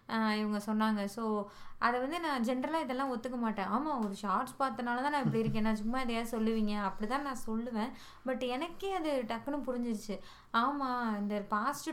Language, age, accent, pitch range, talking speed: Tamil, 20-39, native, 220-275 Hz, 165 wpm